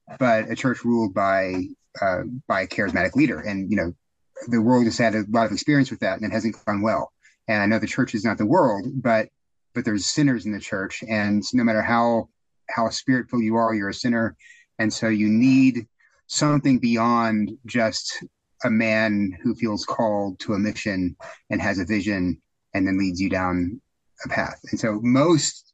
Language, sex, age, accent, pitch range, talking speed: English, male, 30-49, American, 110-130 Hz, 195 wpm